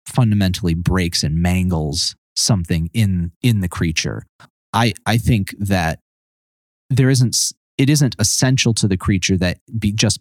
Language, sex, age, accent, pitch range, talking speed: English, male, 30-49, American, 90-110 Hz, 140 wpm